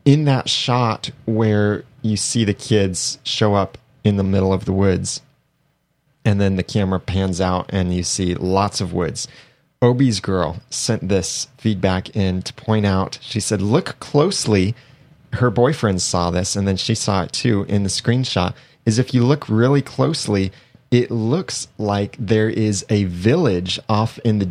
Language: English